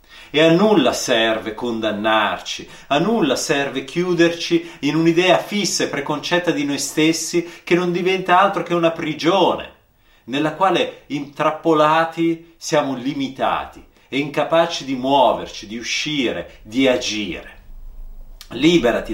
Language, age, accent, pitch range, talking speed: Italian, 30-49, native, 140-170 Hz, 120 wpm